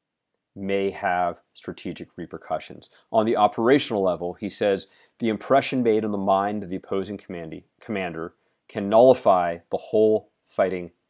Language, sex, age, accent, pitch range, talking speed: English, male, 40-59, American, 90-110 Hz, 135 wpm